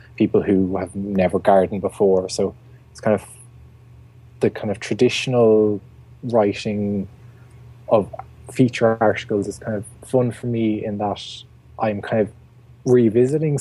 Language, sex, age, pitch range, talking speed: English, male, 20-39, 100-120 Hz, 130 wpm